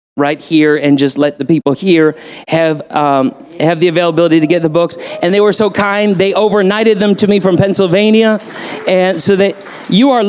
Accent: American